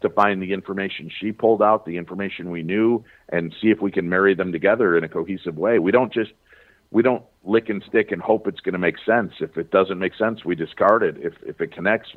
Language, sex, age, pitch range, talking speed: English, male, 50-69, 85-105 Hz, 235 wpm